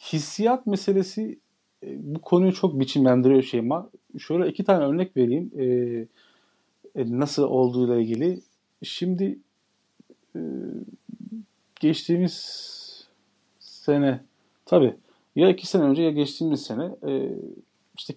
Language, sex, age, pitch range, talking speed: Turkish, male, 40-59, 130-170 Hz, 95 wpm